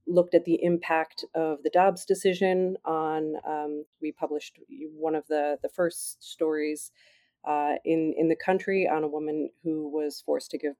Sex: female